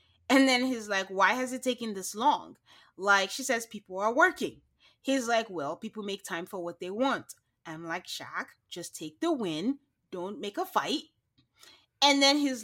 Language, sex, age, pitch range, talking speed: English, female, 30-49, 195-270 Hz, 190 wpm